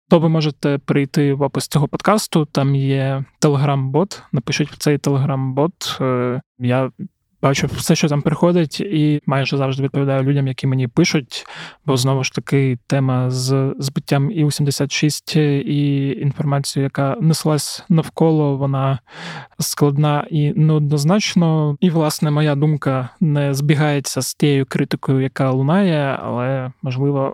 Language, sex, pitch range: Ukrainian, male, 135-155 Hz